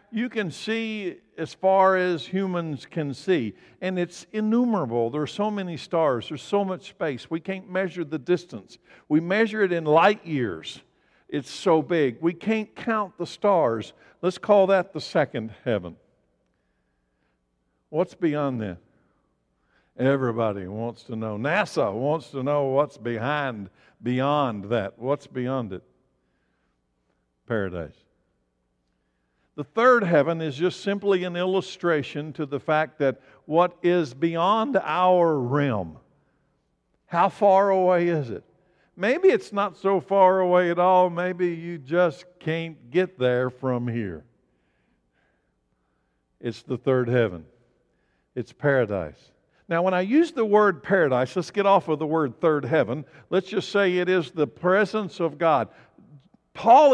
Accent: American